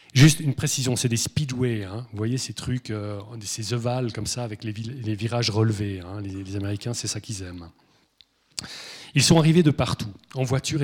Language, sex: French, male